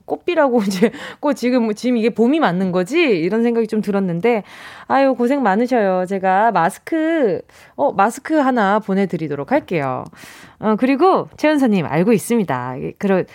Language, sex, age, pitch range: Korean, female, 20-39, 200-330 Hz